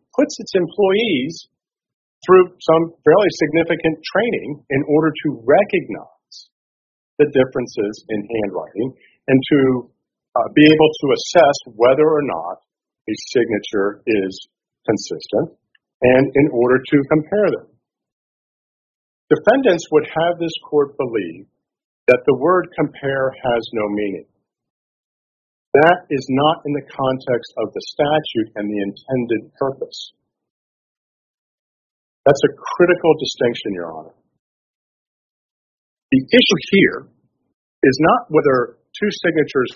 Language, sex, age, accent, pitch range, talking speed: English, male, 50-69, American, 130-185 Hz, 115 wpm